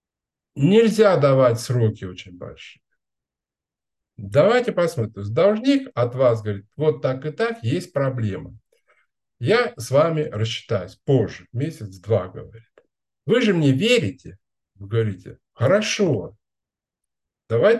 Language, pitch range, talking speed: Russian, 105-170 Hz, 110 wpm